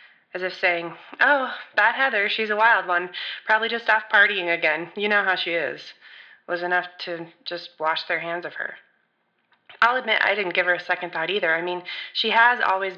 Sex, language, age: female, English, 20-39